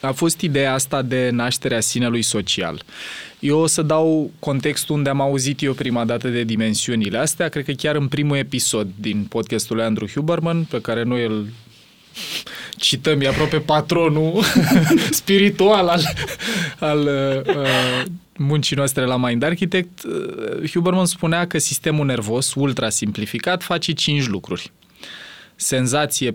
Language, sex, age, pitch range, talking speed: Romanian, male, 20-39, 115-160 Hz, 140 wpm